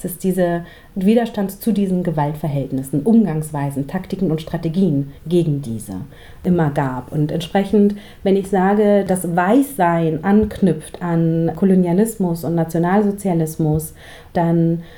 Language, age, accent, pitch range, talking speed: German, 40-59, German, 160-200 Hz, 110 wpm